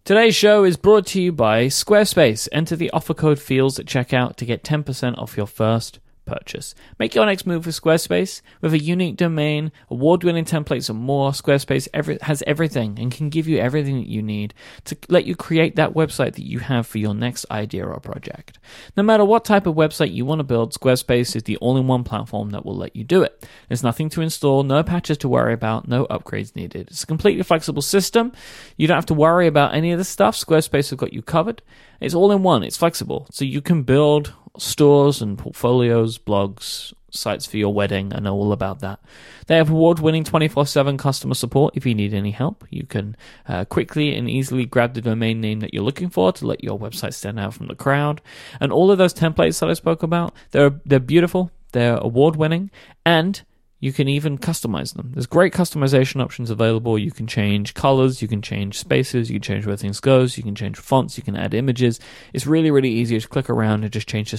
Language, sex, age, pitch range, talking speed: English, male, 30-49, 115-160 Hz, 215 wpm